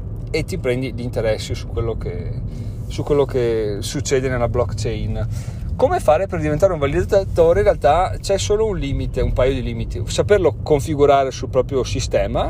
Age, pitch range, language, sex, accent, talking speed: 40-59, 110-145 Hz, Italian, male, native, 165 wpm